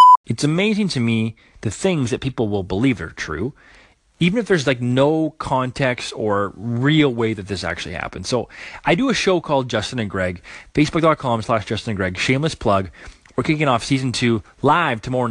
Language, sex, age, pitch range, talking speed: English, male, 30-49, 100-145 Hz, 190 wpm